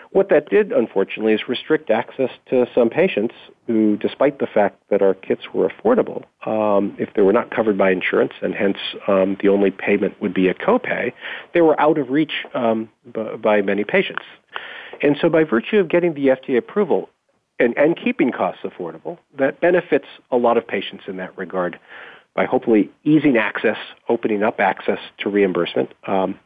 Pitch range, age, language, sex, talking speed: 95-125 Hz, 40-59, English, male, 180 wpm